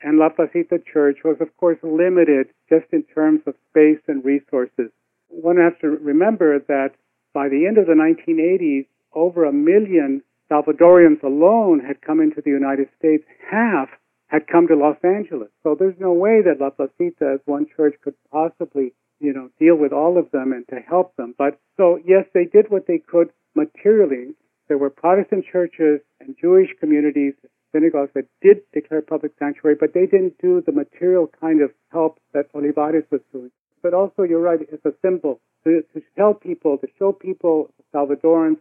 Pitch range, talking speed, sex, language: 145-175 Hz, 180 wpm, male, English